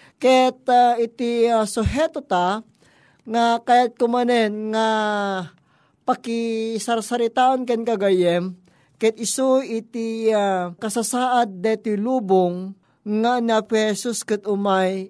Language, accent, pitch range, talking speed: Filipino, native, 205-245 Hz, 100 wpm